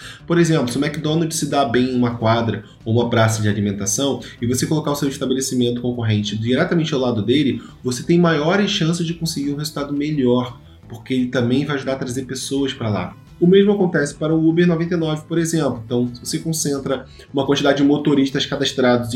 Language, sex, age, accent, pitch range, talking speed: Portuguese, male, 20-39, Brazilian, 120-150 Hz, 200 wpm